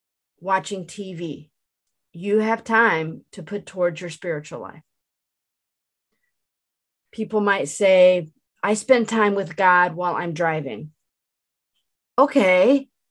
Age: 40-59